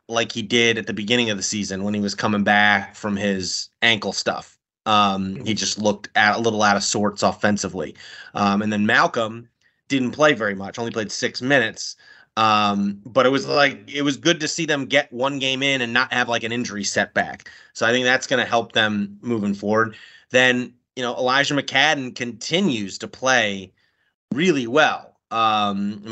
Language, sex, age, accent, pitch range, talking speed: English, male, 30-49, American, 100-125 Hz, 195 wpm